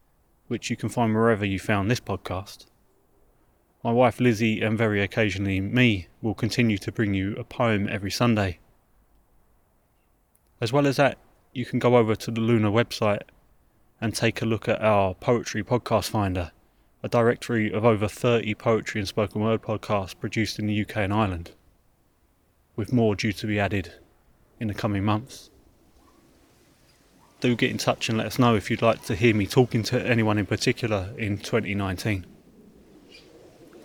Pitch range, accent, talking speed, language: 105-120 Hz, British, 165 wpm, English